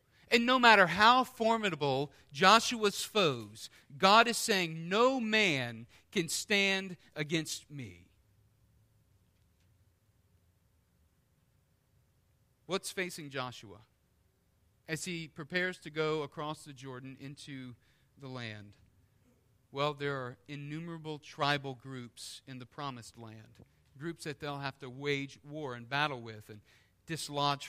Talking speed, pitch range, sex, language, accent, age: 115 wpm, 120-190 Hz, male, English, American, 40-59